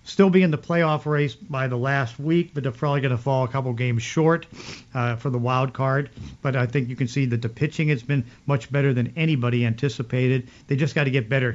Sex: male